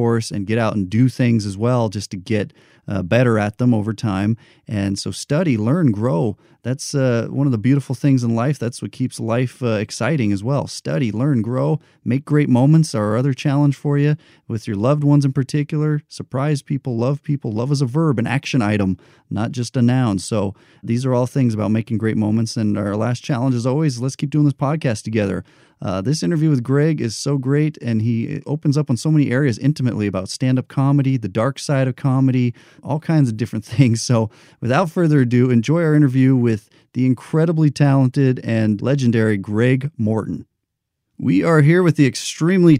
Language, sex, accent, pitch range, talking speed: English, male, American, 115-145 Hz, 200 wpm